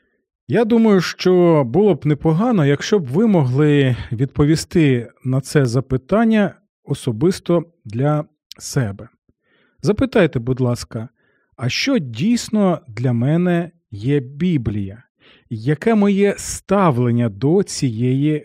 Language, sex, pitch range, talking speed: Ukrainian, male, 125-180 Hz, 105 wpm